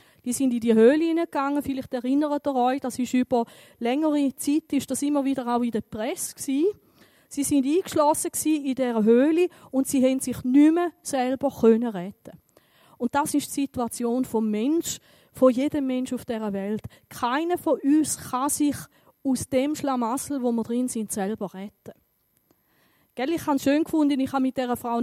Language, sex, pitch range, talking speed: German, female, 220-280 Hz, 175 wpm